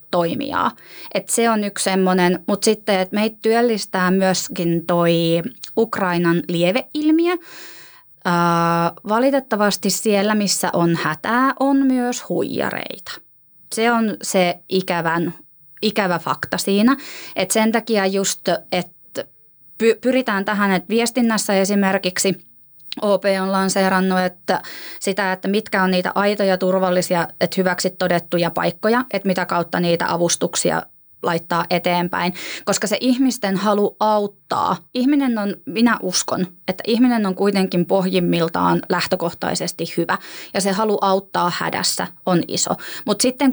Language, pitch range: Finnish, 180-225 Hz